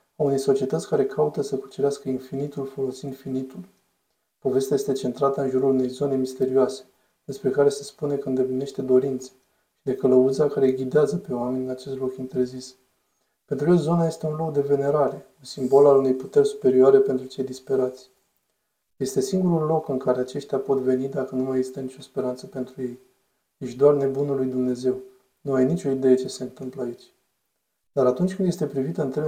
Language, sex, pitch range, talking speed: Romanian, male, 130-145 Hz, 180 wpm